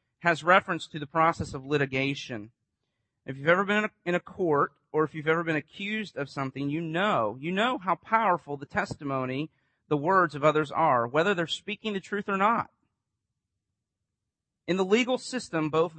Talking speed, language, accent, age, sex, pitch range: 175 wpm, English, American, 40-59, male, 140-180 Hz